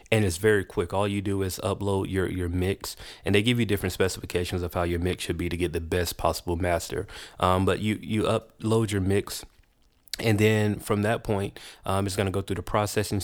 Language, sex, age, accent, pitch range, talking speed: English, male, 30-49, American, 90-105 Hz, 225 wpm